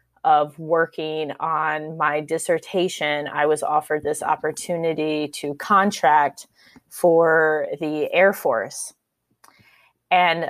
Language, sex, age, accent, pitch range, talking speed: English, female, 20-39, American, 155-205 Hz, 95 wpm